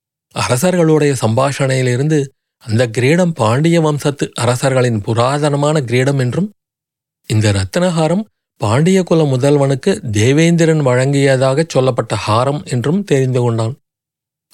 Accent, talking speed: native, 95 wpm